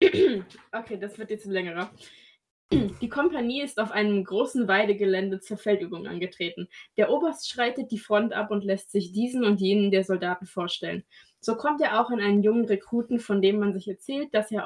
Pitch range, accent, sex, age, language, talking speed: 200-245 Hz, German, female, 20-39, German, 190 wpm